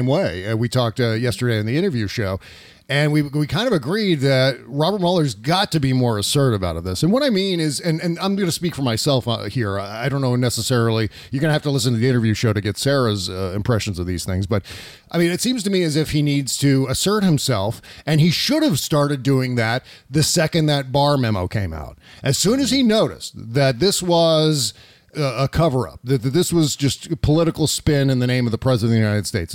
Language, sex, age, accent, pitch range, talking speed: English, male, 40-59, American, 120-160 Hz, 240 wpm